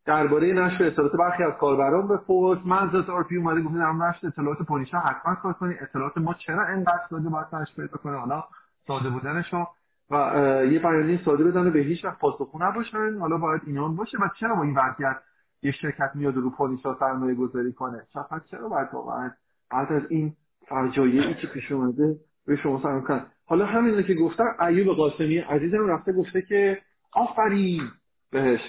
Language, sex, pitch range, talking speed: Persian, male, 150-220 Hz, 175 wpm